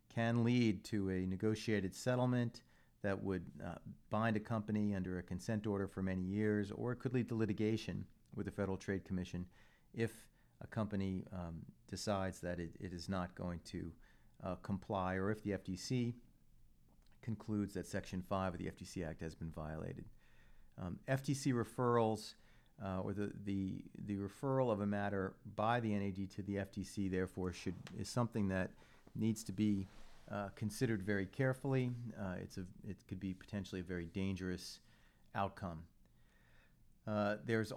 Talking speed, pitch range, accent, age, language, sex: 160 wpm, 95-115 Hz, American, 40-59, English, male